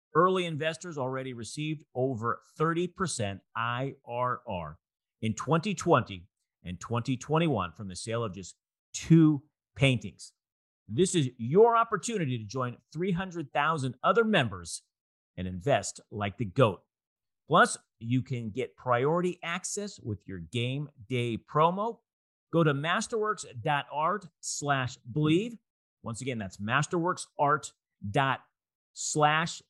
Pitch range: 115-170 Hz